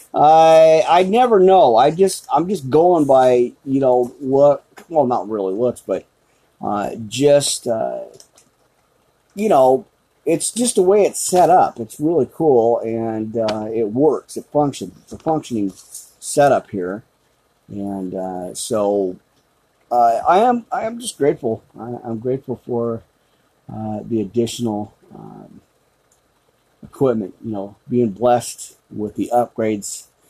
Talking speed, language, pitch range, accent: 135 wpm, English, 105-140 Hz, American